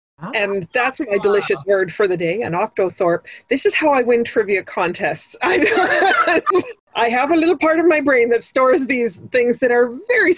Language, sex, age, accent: English, female, 30-49, American